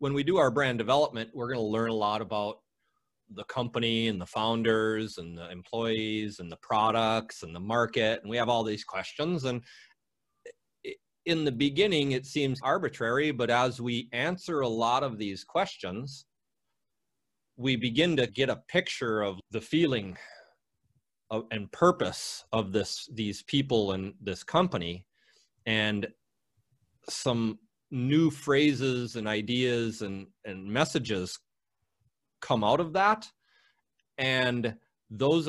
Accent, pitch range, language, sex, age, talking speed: American, 110-130 Hz, English, male, 30-49, 140 wpm